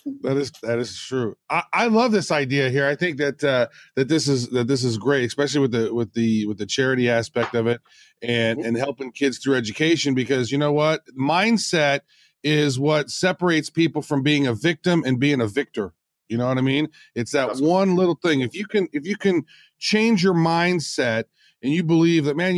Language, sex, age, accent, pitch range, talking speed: English, male, 40-59, American, 130-170 Hz, 215 wpm